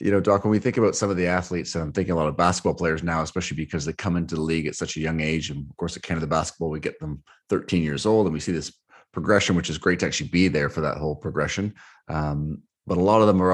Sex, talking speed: male, 295 wpm